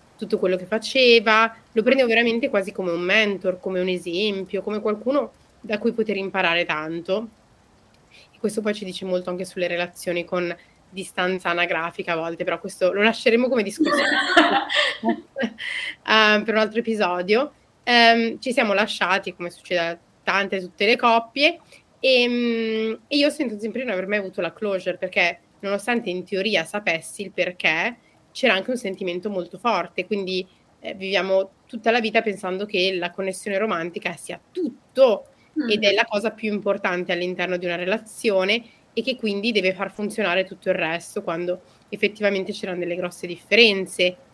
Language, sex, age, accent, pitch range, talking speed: Italian, female, 20-39, native, 180-225 Hz, 165 wpm